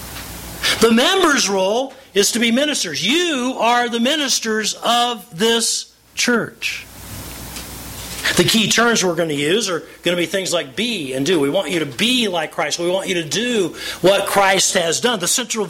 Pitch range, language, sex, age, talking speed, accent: 170-235 Hz, English, male, 50-69, 185 wpm, American